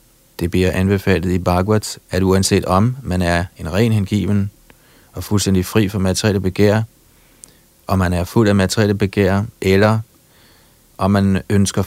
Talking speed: 150 wpm